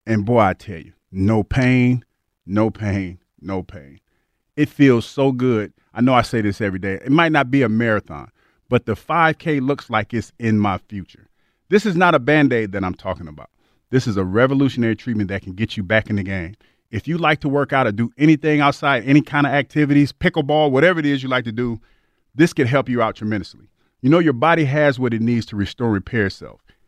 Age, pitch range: 40-59, 105-150 Hz